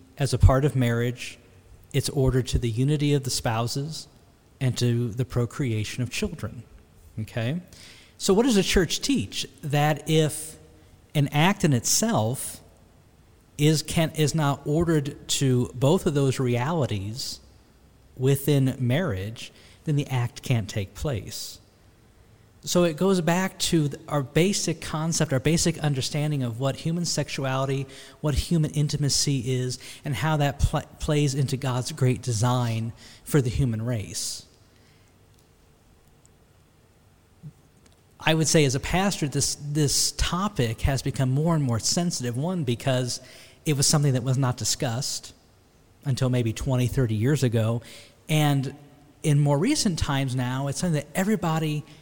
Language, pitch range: English, 120-150 Hz